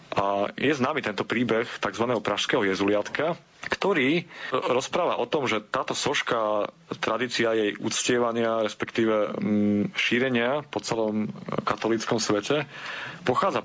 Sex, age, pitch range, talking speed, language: male, 30-49, 105-125 Hz, 110 wpm, Slovak